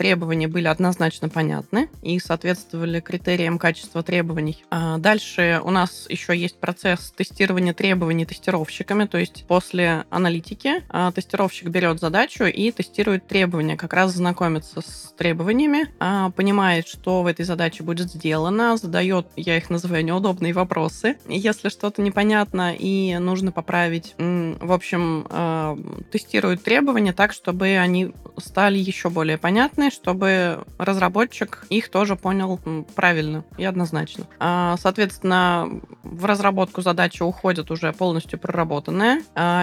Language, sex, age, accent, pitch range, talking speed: Russian, female, 20-39, native, 165-195 Hz, 120 wpm